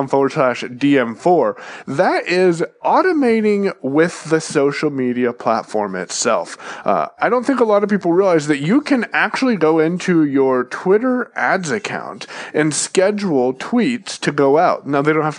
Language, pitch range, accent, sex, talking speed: English, 135-190 Hz, American, male, 160 wpm